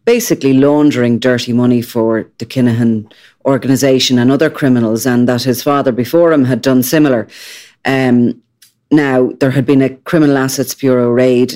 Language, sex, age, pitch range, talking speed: English, female, 30-49, 120-140 Hz, 155 wpm